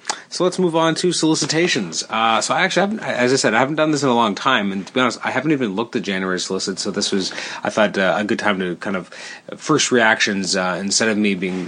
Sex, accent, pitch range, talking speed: male, American, 100-125 Hz, 265 wpm